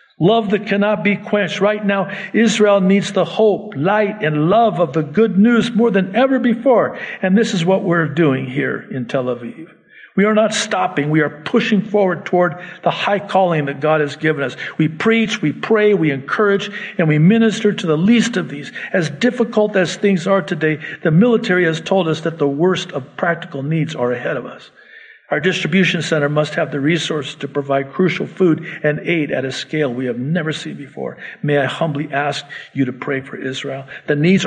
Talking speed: 200 wpm